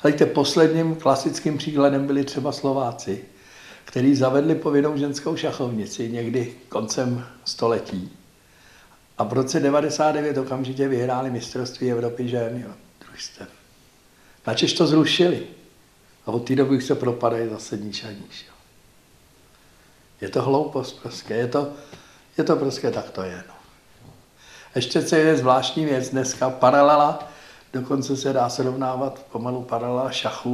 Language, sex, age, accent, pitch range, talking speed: Czech, male, 60-79, native, 115-140 Hz, 130 wpm